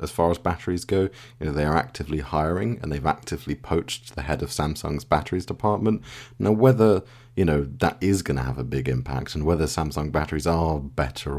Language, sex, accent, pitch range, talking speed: English, male, British, 75-105 Hz, 205 wpm